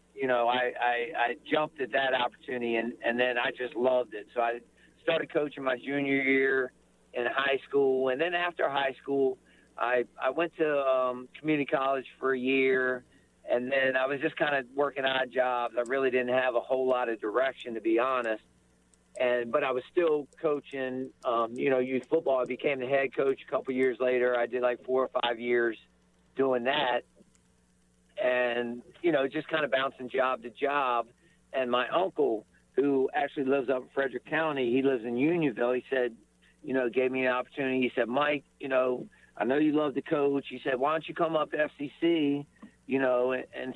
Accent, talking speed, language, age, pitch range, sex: American, 200 wpm, English, 50-69, 125-140 Hz, male